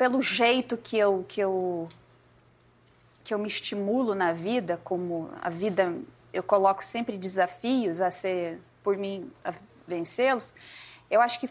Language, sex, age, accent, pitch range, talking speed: Portuguese, female, 20-39, Brazilian, 210-270 Hz, 145 wpm